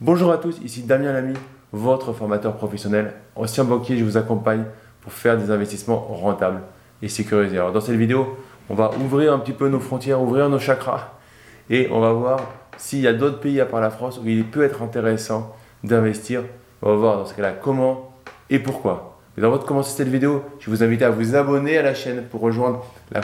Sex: male